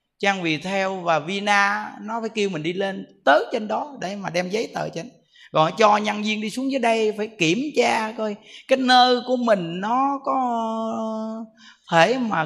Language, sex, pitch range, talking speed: Vietnamese, male, 170-230 Hz, 190 wpm